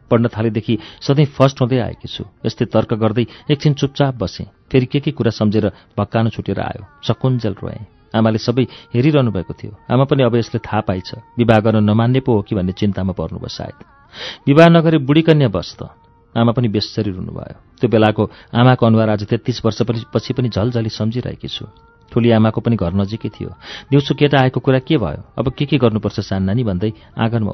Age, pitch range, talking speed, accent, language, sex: 40-59, 105-125 Hz, 75 wpm, Indian, English, male